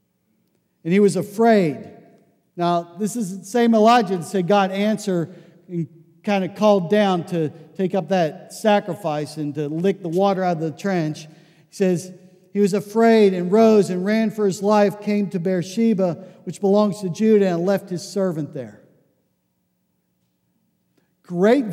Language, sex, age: English, male, 50-69